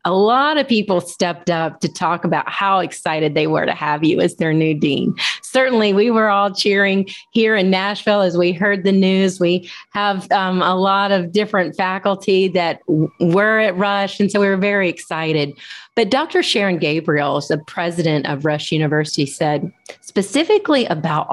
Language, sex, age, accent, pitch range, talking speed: English, female, 30-49, American, 160-205 Hz, 175 wpm